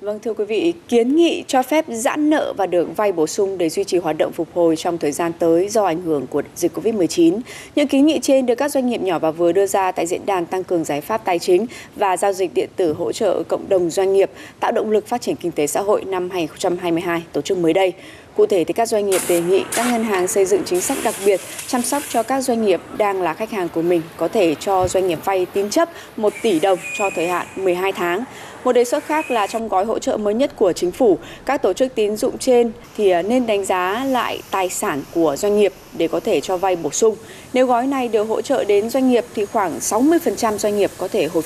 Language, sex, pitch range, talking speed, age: Vietnamese, female, 180-245 Hz, 260 wpm, 20-39